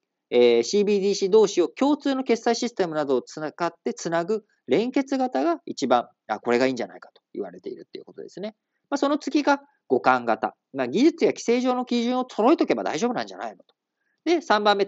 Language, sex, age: Japanese, male, 40-59